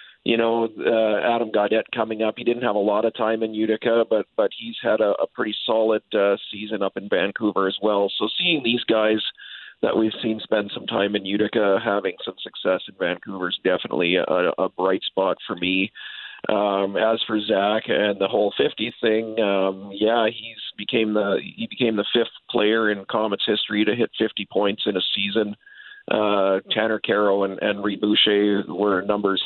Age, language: 40-59, English